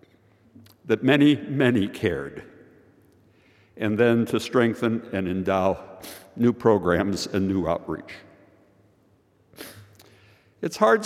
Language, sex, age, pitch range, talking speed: English, male, 60-79, 100-120 Hz, 90 wpm